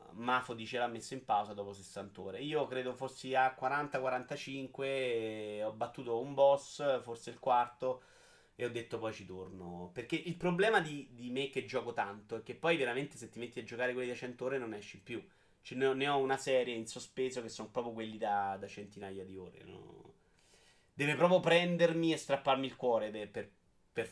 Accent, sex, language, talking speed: native, male, Italian, 200 wpm